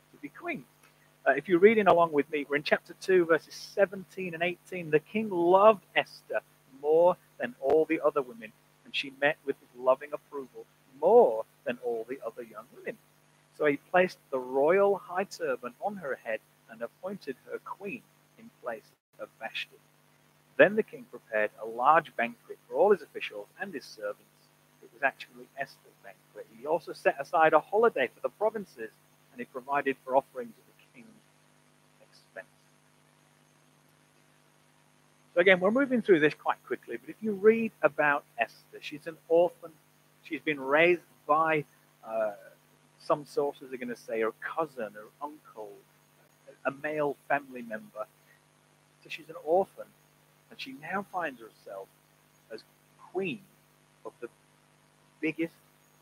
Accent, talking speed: British, 155 wpm